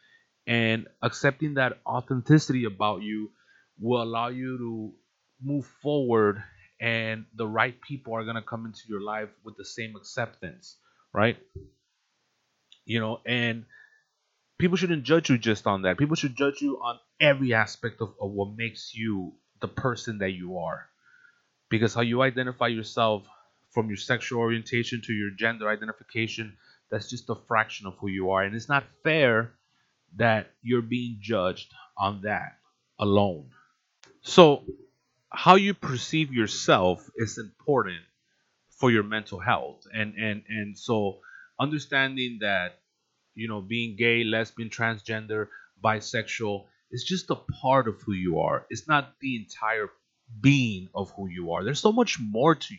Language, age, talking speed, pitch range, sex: English, 30-49, 150 wpm, 105-130 Hz, male